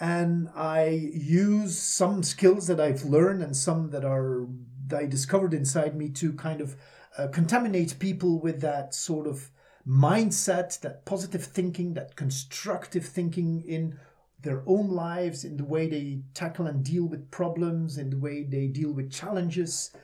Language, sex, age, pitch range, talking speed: English, male, 40-59, 135-170 Hz, 160 wpm